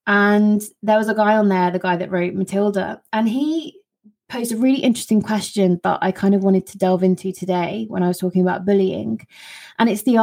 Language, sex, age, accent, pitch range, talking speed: English, female, 20-39, British, 185-230 Hz, 215 wpm